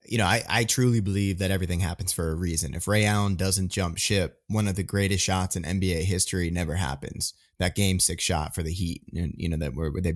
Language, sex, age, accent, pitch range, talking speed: English, male, 20-39, American, 90-105 Hz, 240 wpm